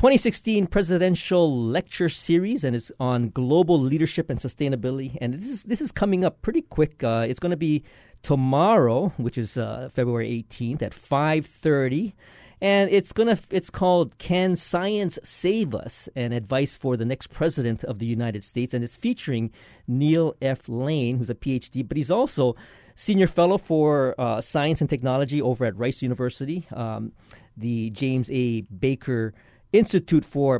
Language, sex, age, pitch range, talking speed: English, male, 40-59, 125-170 Hz, 160 wpm